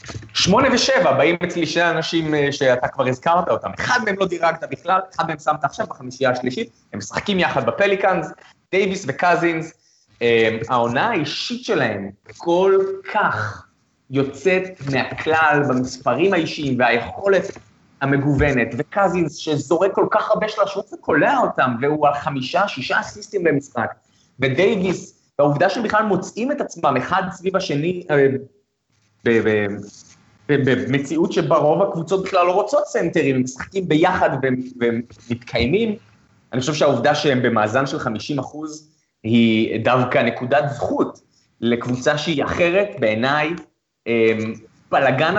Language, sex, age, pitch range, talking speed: Hebrew, male, 30-49, 125-180 Hz, 120 wpm